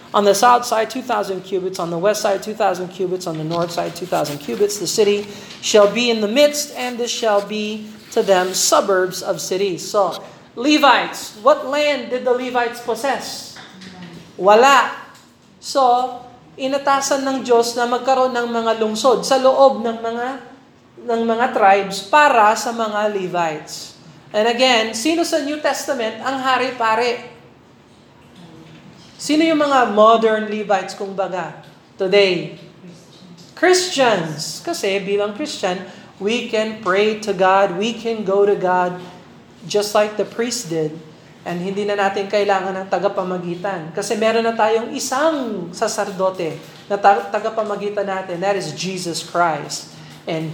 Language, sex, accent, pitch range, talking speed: Filipino, male, native, 190-245 Hz, 140 wpm